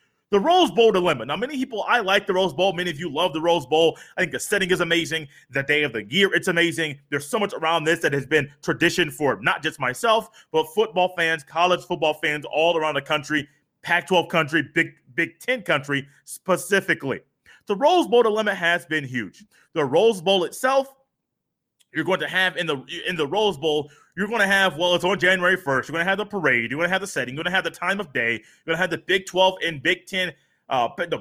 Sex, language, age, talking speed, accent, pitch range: male, English, 30-49, 235 wpm, American, 150-195 Hz